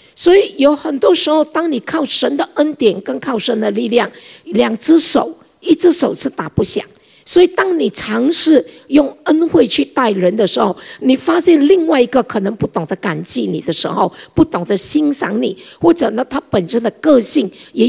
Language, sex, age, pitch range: Chinese, female, 50-69, 225-305 Hz